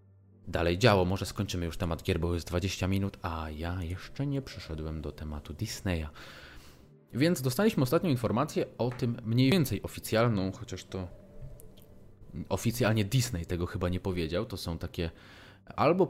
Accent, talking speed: native, 150 wpm